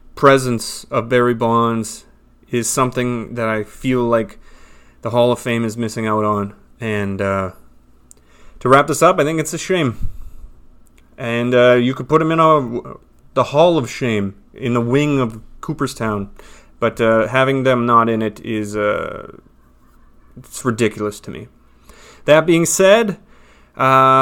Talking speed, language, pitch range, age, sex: 155 wpm, English, 115-140 Hz, 30-49, male